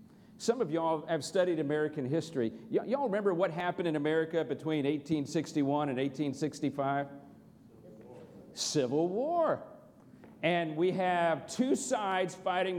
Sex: male